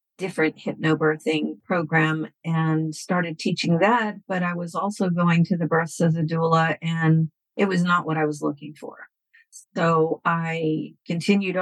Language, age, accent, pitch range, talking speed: English, 50-69, American, 160-200 Hz, 155 wpm